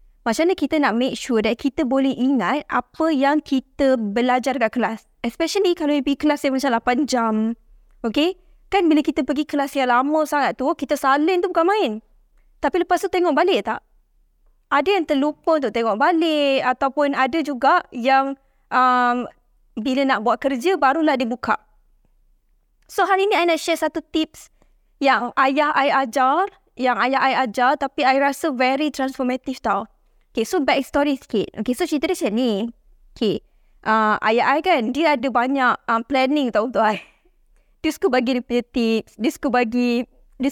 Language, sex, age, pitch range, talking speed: Malay, female, 20-39, 245-305 Hz, 175 wpm